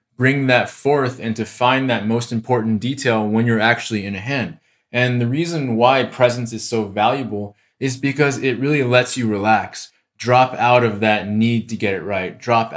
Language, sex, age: English, male, 20-39